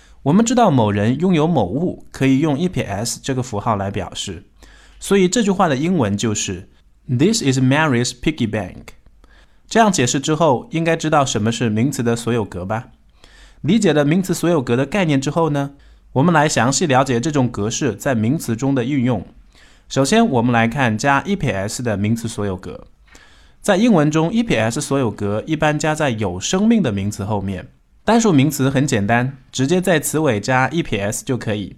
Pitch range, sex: 110-160 Hz, male